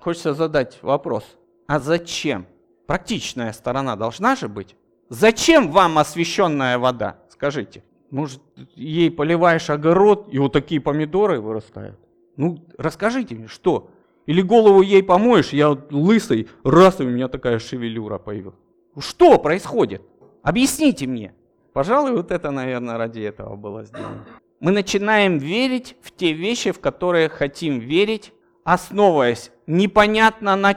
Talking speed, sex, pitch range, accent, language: 130 wpm, male, 140-200 Hz, native, Russian